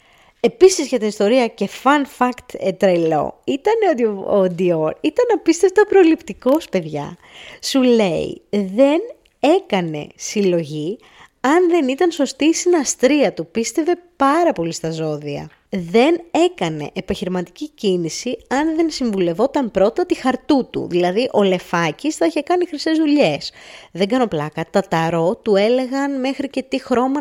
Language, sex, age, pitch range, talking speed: Greek, female, 20-39, 165-270 Hz, 135 wpm